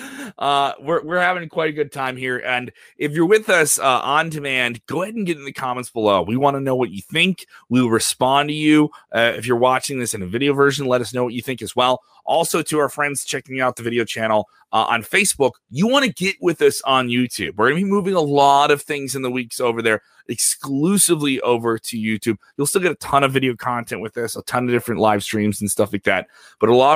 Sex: male